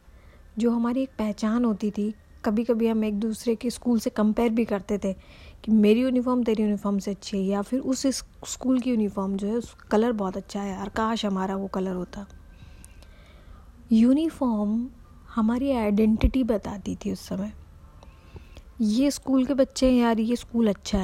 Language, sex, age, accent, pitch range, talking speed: Hindi, female, 20-39, native, 195-235 Hz, 175 wpm